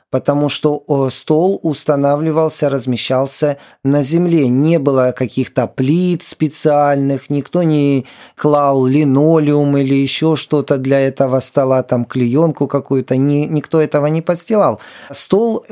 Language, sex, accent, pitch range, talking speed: Ukrainian, male, native, 130-160 Hz, 120 wpm